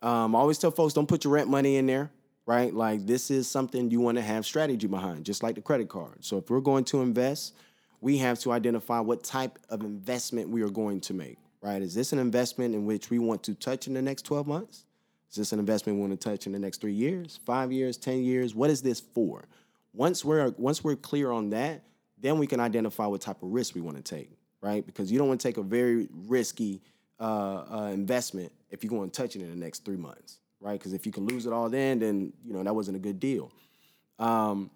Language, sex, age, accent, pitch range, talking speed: English, male, 20-39, American, 105-135 Hz, 250 wpm